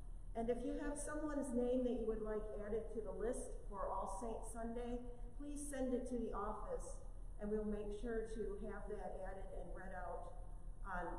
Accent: American